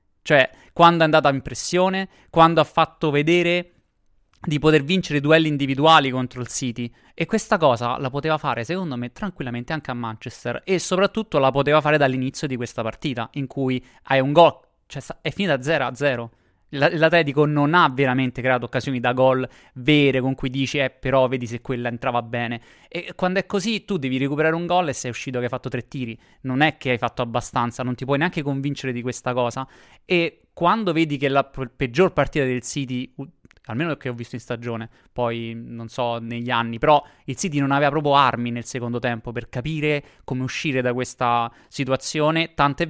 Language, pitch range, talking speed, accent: Italian, 125-160 Hz, 195 wpm, native